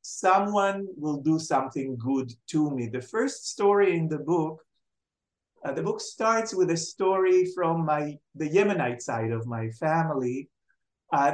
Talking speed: 155 wpm